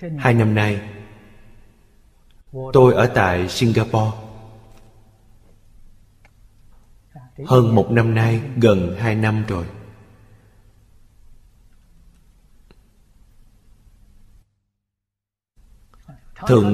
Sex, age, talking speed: male, 20-39, 55 wpm